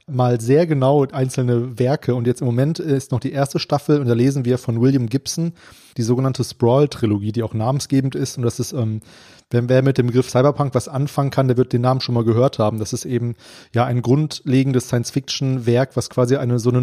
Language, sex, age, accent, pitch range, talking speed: German, male, 30-49, German, 120-135 Hz, 220 wpm